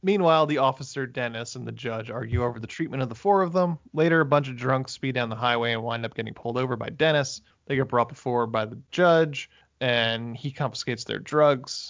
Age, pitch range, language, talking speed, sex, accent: 20-39, 120-145 Hz, English, 225 wpm, male, American